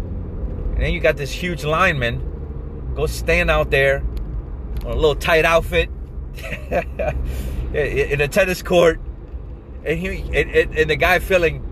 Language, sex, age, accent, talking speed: English, male, 30-49, American, 140 wpm